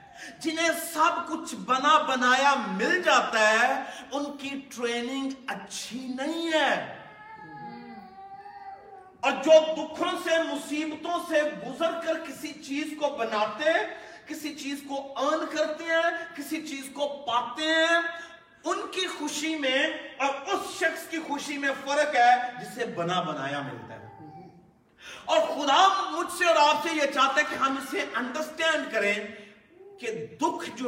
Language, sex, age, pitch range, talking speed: Urdu, male, 40-59, 240-325 Hz, 140 wpm